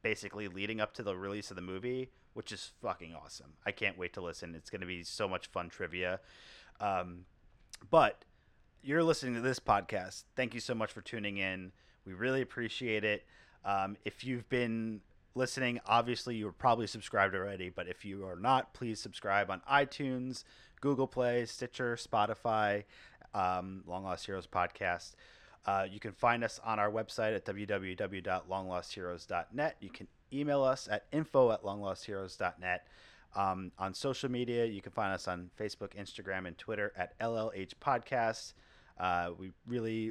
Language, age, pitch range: English, 30-49, 95-120 Hz